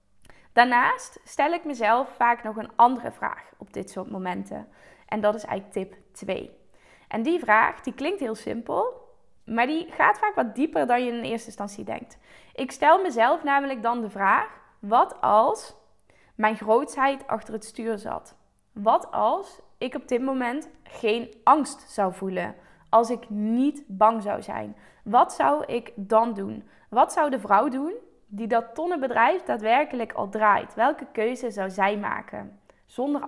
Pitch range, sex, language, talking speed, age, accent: 215-280 Hz, female, Dutch, 165 wpm, 20-39, Dutch